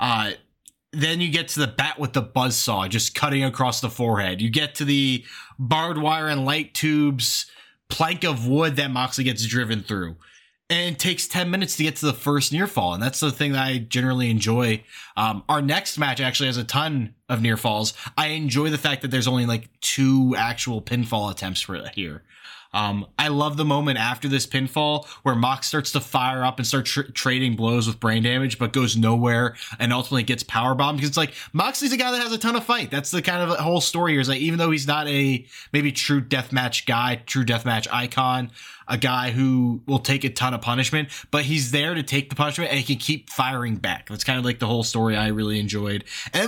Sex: male